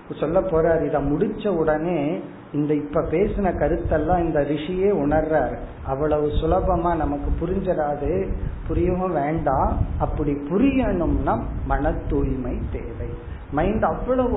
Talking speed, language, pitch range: 105 wpm, Tamil, 150-195 Hz